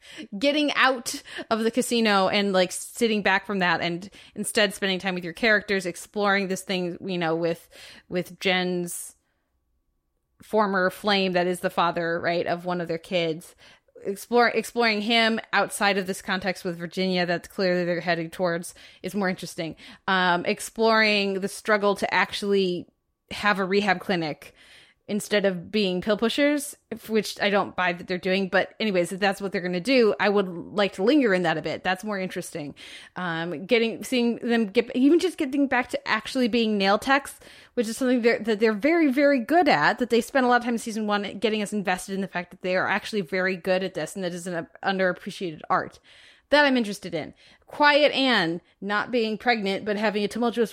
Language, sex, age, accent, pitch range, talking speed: English, female, 20-39, American, 180-230 Hz, 195 wpm